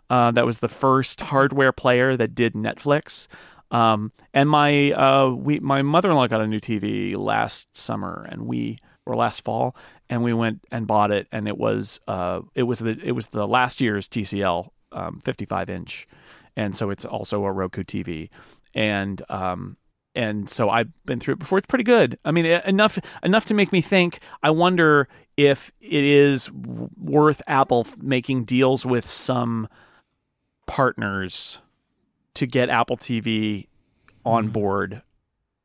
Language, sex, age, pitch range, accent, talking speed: English, male, 40-59, 105-135 Hz, American, 160 wpm